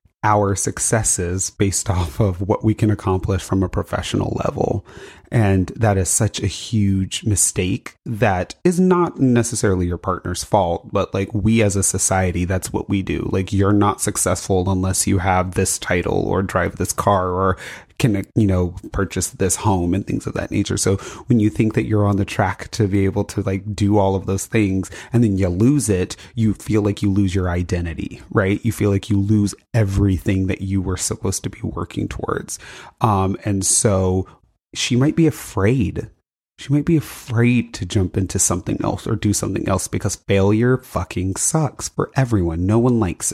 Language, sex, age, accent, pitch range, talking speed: English, male, 30-49, American, 95-110 Hz, 190 wpm